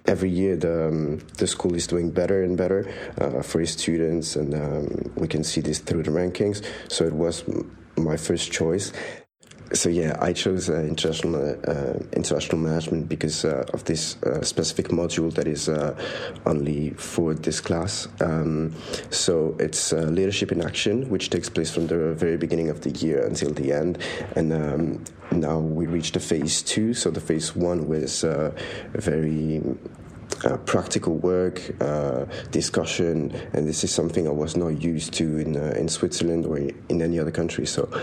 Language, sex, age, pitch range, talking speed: English, male, 30-49, 75-85 Hz, 180 wpm